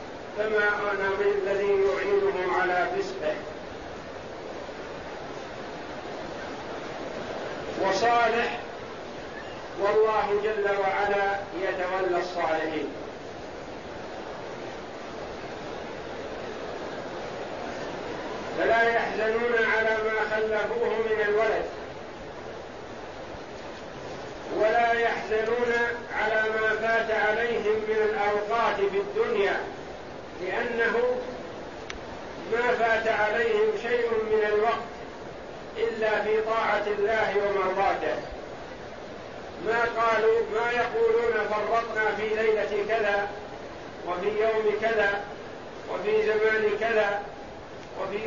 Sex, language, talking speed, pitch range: male, Arabic, 70 wpm, 205-230 Hz